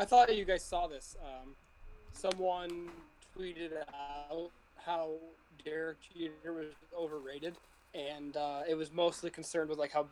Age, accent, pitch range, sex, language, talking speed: 20-39, American, 145-170 Hz, male, English, 140 wpm